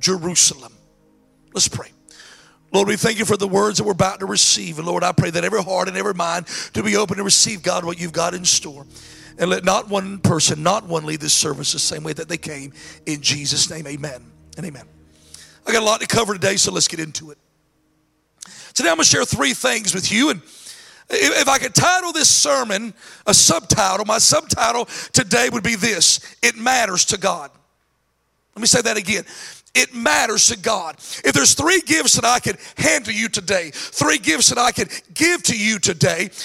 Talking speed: 205 wpm